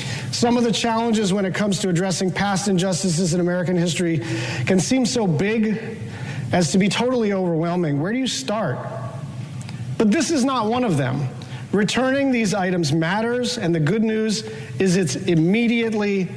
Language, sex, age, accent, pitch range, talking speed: English, male, 40-59, American, 140-210 Hz, 165 wpm